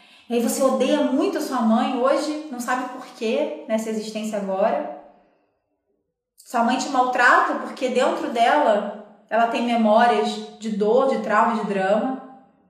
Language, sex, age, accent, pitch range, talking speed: Portuguese, female, 20-39, Brazilian, 210-285 Hz, 145 wpm